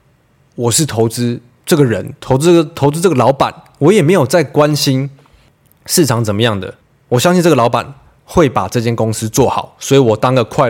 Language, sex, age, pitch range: Chinese, male, 20-39, 115-150 Hz